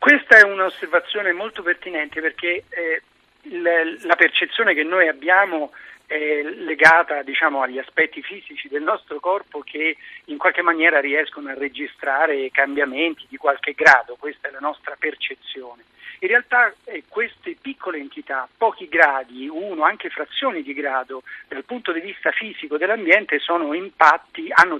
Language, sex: Italian, male